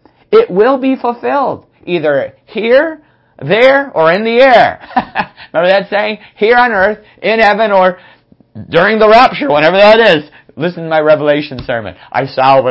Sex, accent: male, American